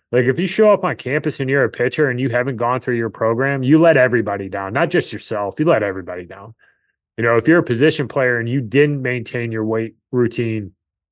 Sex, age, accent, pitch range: male, 20-39, American, 105-135 Hz